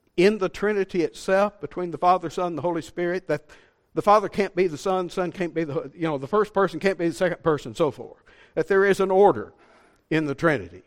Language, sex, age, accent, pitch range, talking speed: English, male, 50-69, American, 155-195 Hz, 245 wpm